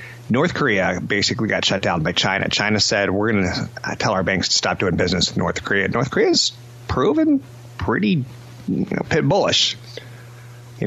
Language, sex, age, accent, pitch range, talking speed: English, male, 30-49, American, 95-120 Hz, 175 wpm